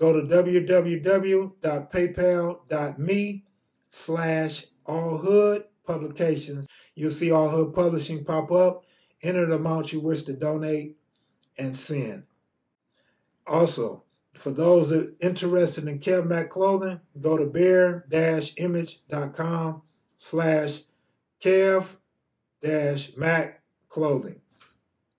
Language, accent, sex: English, American, male